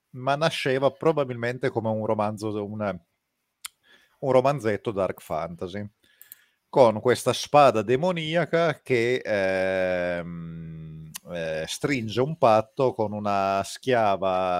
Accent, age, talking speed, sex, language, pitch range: native, 30-49, 95 wpm, male, Italian, 100-125 Hz